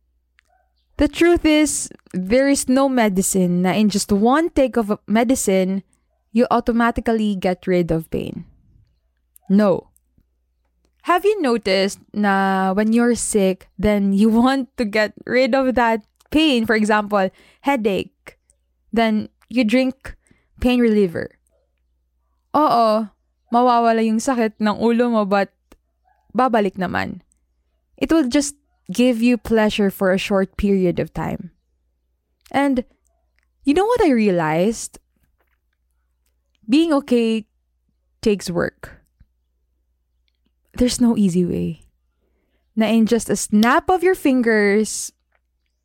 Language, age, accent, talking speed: English, 20-39, Filipino, 115 wpm